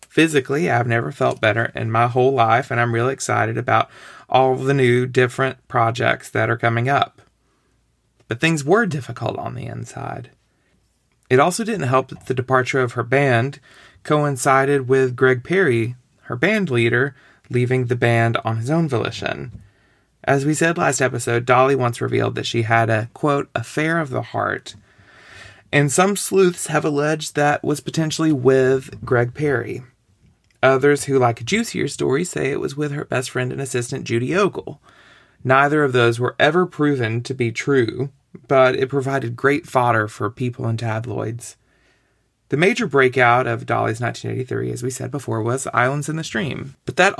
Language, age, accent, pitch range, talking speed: English, 30-49, American, 115-145 Hz, 170 wpm